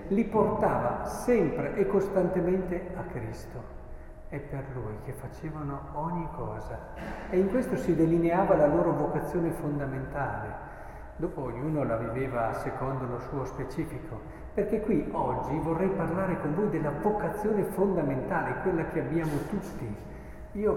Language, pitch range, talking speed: Italian, 140-190 Hz, 135 wpm